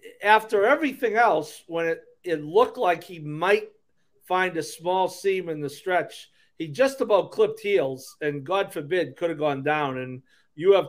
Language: English